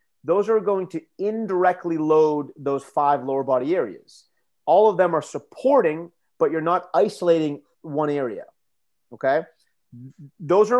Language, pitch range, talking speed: Italian, 140-175 Hz, 140 wpm